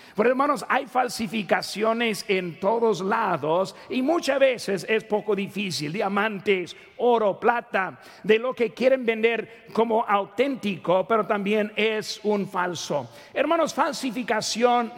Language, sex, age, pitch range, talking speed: Spanish, male, 50-69, 195-240 Hz, 120 wpm